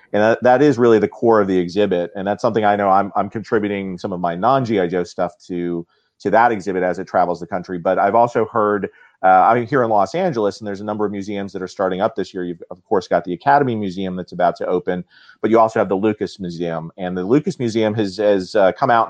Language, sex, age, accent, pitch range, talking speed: English, male, 40-59, American, 95-110 Hz, 260 wpm